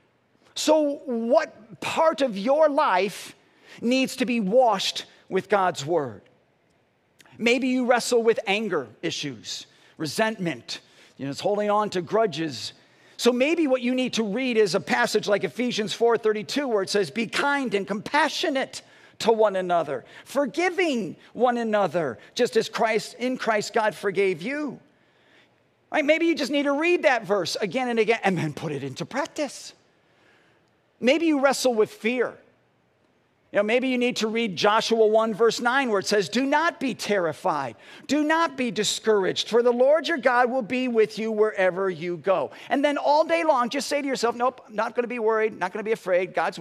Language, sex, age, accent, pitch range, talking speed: English, male, 50-69, American, 200-260 Hz, 180 wpm